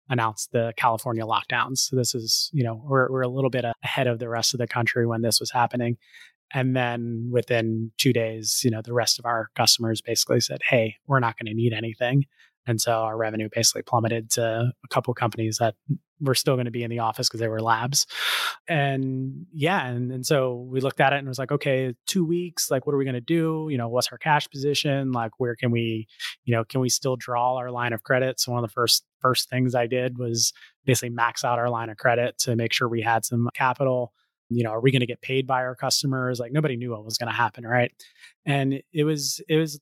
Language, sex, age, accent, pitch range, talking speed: English, male, 20-39, American, 115-130 Hz, 245 wpm